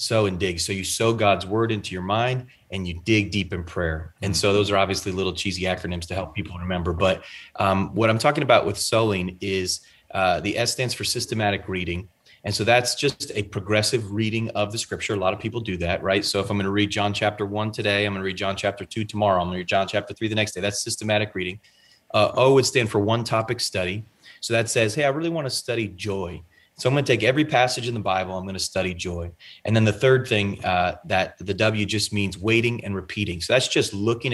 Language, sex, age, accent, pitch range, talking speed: English, male, 30-49, American, 95-115 Hz, 250 wpm